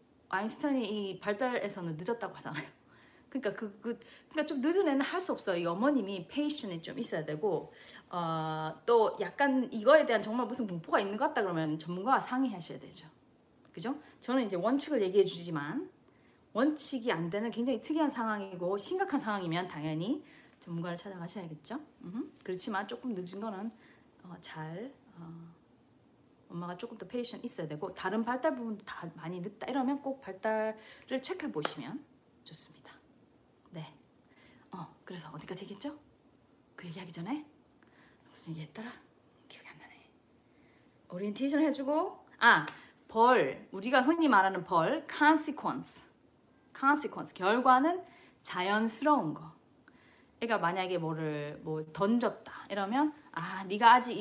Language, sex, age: Korean, female, 30-49